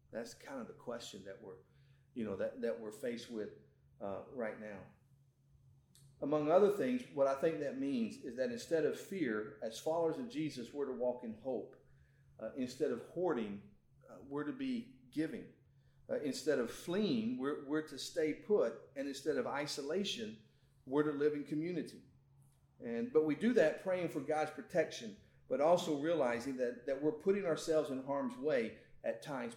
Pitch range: 130-165 Hz